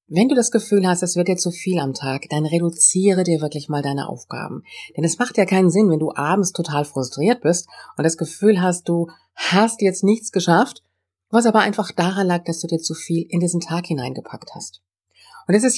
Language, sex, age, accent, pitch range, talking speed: German, female, 40-59, German, 145-200 Hz, 220 wpm